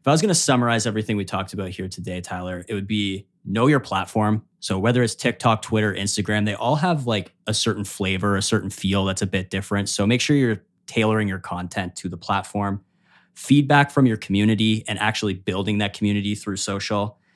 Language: English